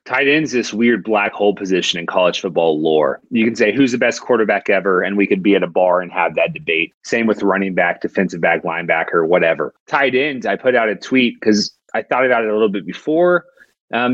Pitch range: 95-125 Hz